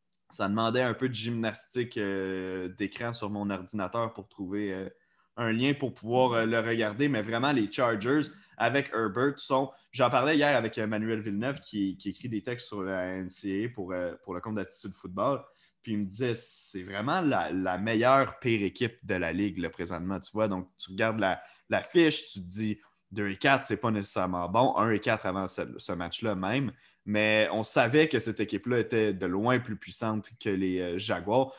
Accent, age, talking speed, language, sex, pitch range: Canadian, 20-39, 200 wpm, French, male, 100-125 Hz